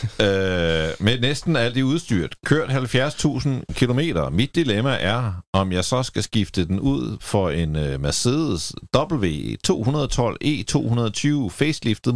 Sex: male